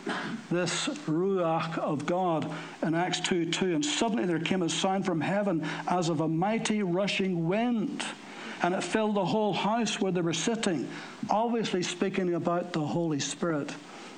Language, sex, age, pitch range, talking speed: English, male, 60-79, 165-195 Hz, 160 wpm